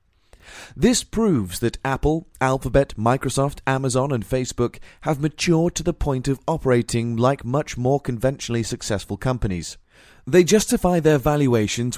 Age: 30-49